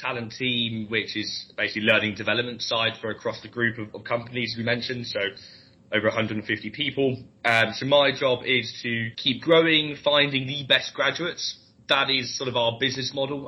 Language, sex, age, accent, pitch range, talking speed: English, male, 20-39, British, 110-130 Hz, 185 wpm